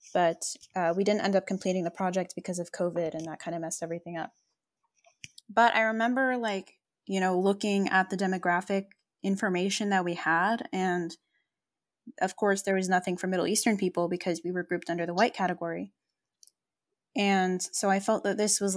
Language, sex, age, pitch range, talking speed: English, female, 10-29, 180-210 Hz, 185 wpm